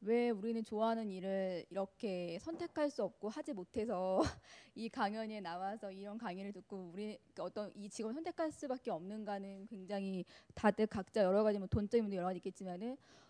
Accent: native